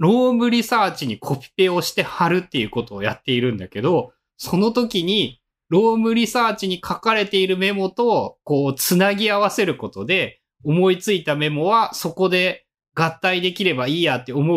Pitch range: 130-205 Hz